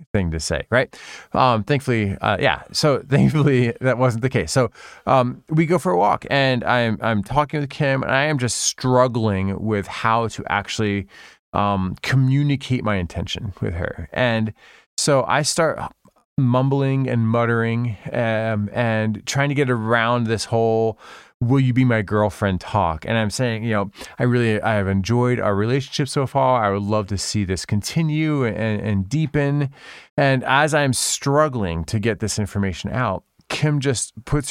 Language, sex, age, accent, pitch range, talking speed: English, male, 30-49, American, 105-135 Hz, 170 wpm